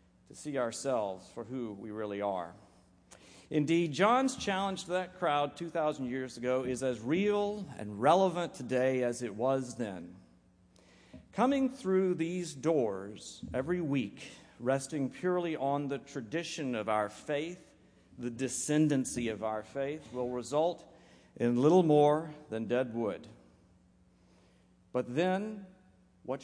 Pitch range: 115-155 Hz